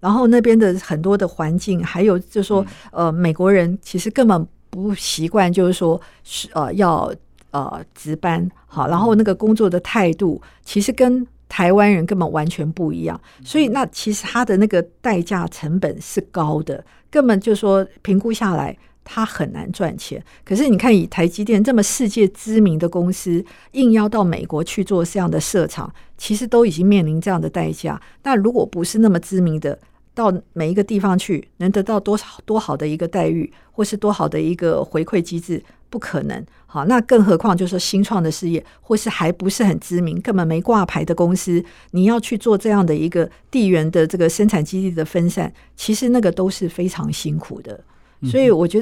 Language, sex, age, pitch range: Chinese, female, 50-69, 170-215 Hz